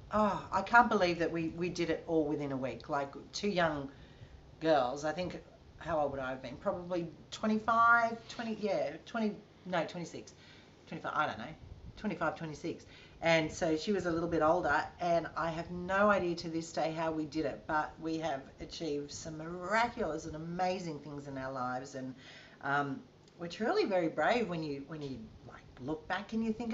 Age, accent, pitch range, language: 40-59, Australian, 145-205 Hz, English